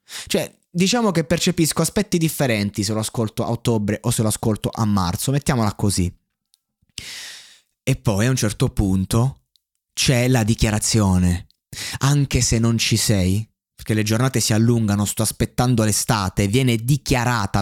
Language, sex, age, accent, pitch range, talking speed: Italian, male, 20-39, native, 110-140 Hz, 145 wpm